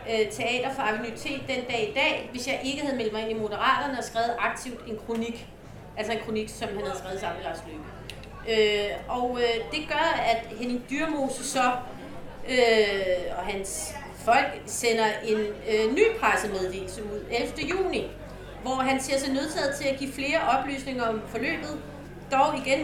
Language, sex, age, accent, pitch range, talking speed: Danish, female, 30-49, native, 215-270 Hz, 165 wpm